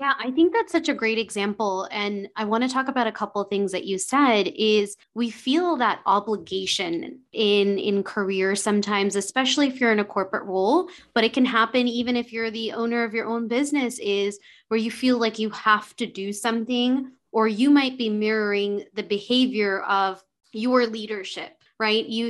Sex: female